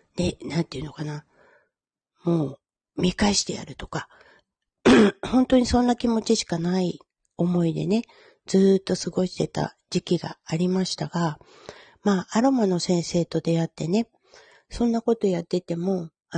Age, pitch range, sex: 40-59, 170-215 Hz, female